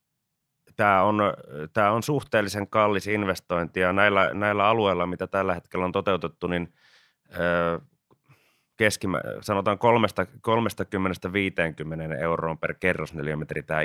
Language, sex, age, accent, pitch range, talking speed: Finnish, male, 30-49, native, 85-100 Hz, 105 wpm